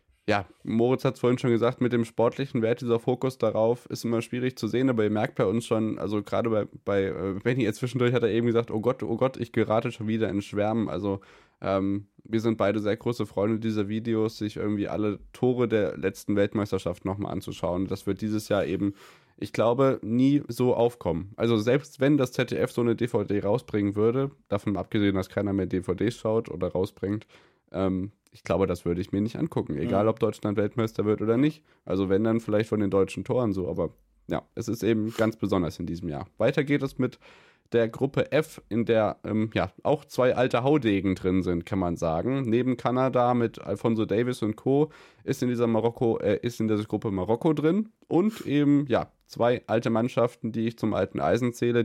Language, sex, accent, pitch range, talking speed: German, male, German, 100-125 Hz, 205 wpm